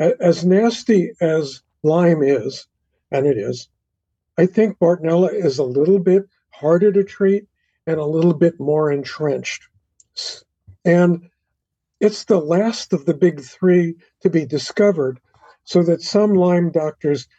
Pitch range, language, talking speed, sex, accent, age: 130-185 Hz, English, 140 wpm, male, American, 50-69